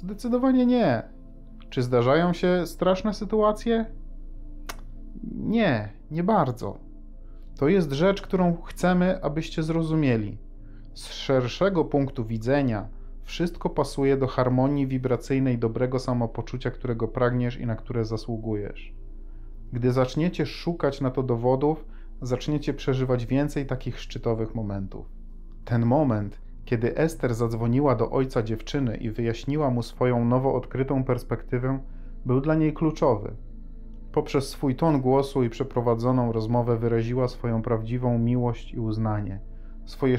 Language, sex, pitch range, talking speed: Polish, male, 115-140 Hz, 120 wpm